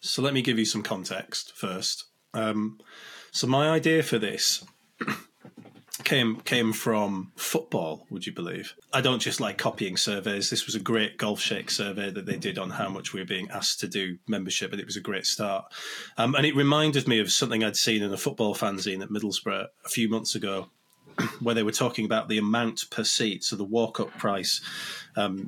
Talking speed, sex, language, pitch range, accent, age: 205 wpm, male, English, 105-125 Hz, British, 30-49